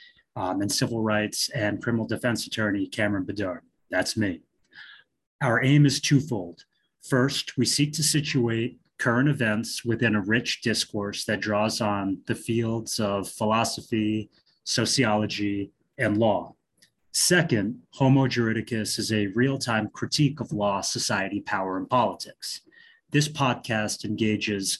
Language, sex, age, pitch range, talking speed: English, male, 30-49, 105-125 Hz, 130 wpm